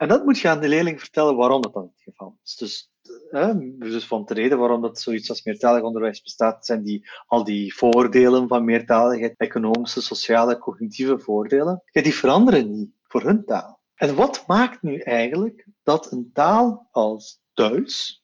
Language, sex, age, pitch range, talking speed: Dutch, male, 30-49, 120-185 Hz, 170 wpm